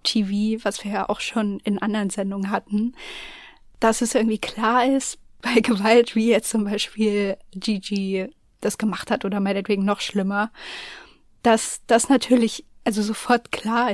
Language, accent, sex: German, German, female